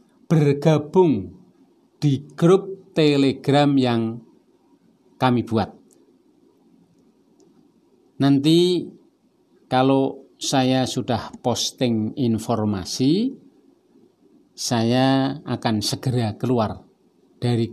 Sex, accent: male, native